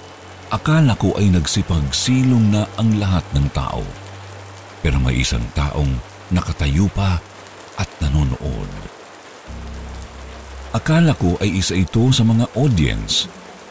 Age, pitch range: 50-69, 80-110 Hz